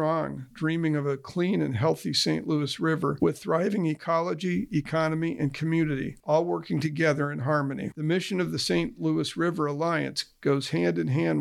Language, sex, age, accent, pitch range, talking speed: English, male, 50-69, American, 150-170 Hz, 160 wpm